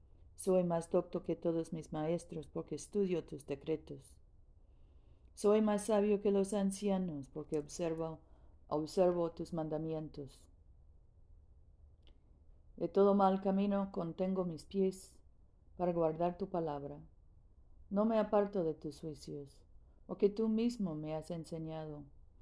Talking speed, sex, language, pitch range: 125 wpm, female, Spanish, 140-190 Hz